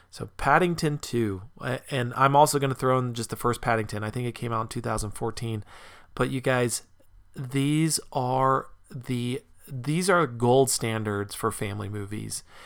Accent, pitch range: American, 115-145 Hz